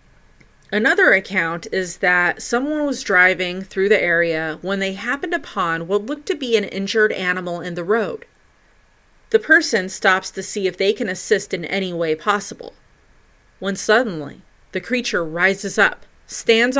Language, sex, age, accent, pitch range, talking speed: English, female, 30-49, American, 180-230 Hz, 155 wpm